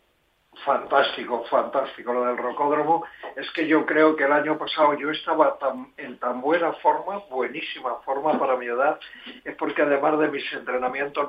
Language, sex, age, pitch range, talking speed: Spanish, male, 60-79, 130-155 Hz, 165 wpm